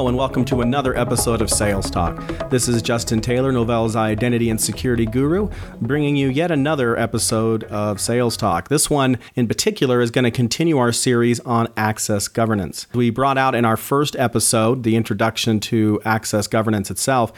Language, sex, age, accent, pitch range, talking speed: English, male, 40-59, American, 110-125 Hz, 175 wpm